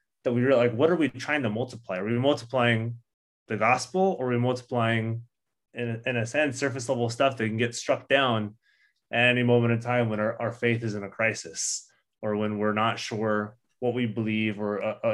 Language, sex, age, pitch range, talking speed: English, male, 20-39, 110-125 Hz, 220 wpm